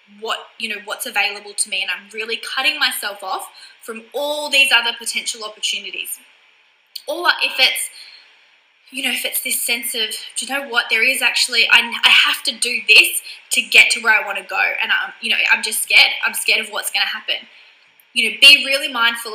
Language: English